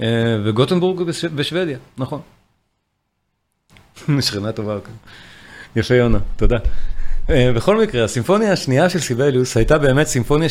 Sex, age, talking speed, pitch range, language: male, 40-59, 120 wpm, 110-150 Hz, Hebrew